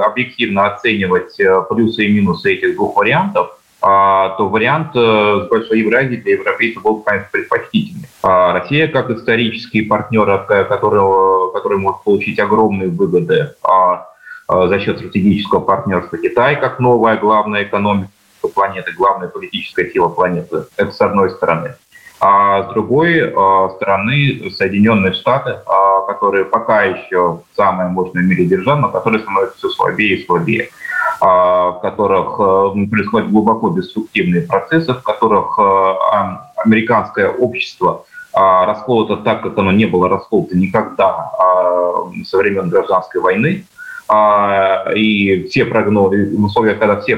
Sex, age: male, 20-39